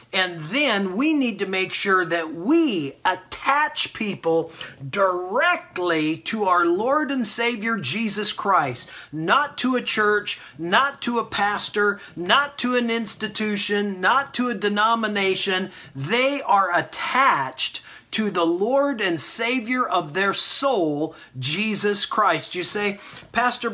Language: English